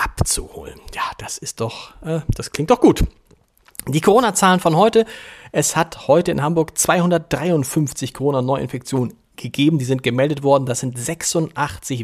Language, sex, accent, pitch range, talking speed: German, male, German, 125-170 Hz, 150 wpm